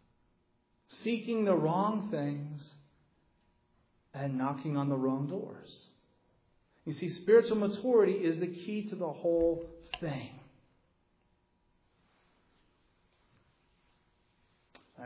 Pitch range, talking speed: 125-160 Hz, 90 wpm